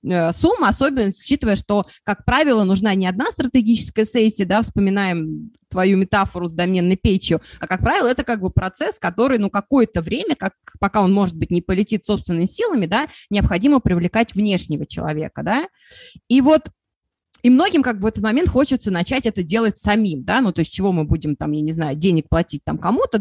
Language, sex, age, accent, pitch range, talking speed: Russian, female, 20-39, native, 190-250 Hz, 185 wpm